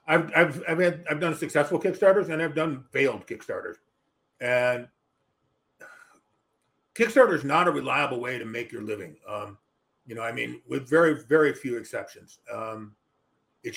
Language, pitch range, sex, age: English, 135-165 Hz, male, 50-69